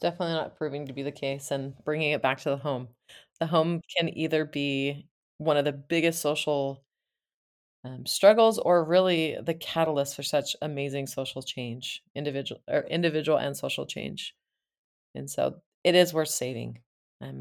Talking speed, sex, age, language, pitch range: 165 wpm, female, 30-49, English, 130-160 Hz